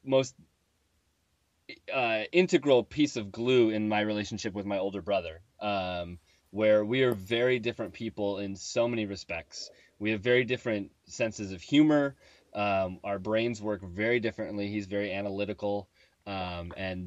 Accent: American